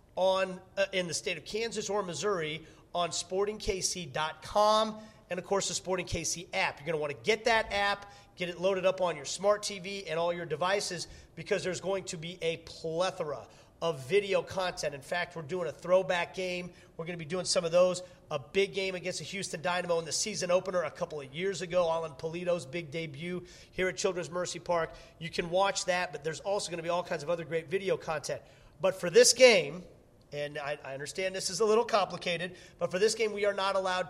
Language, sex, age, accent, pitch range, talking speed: English, male, 40-59, American, 165-195 Hz, 220 wpm